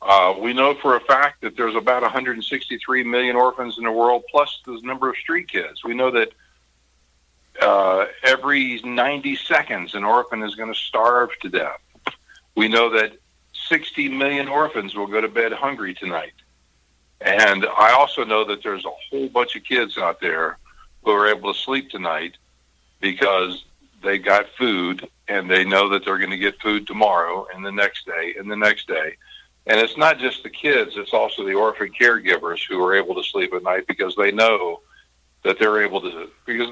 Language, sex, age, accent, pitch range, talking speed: English, male, 60-79, American, 100-135 Hz, 190 wpm